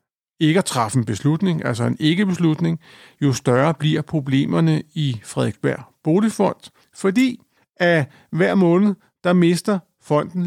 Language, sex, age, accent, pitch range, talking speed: Danish, male, 60-79, native, 135-165 Hz, 125 wpm